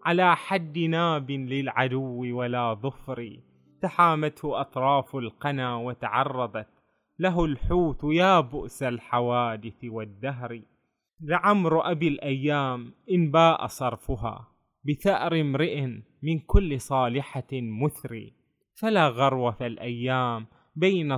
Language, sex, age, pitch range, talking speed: Arabic, male, 20-39, 125-165 Hz, 90 wpm